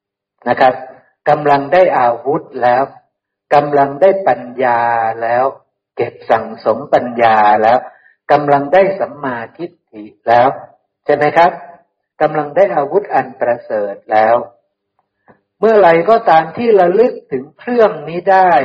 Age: 60-79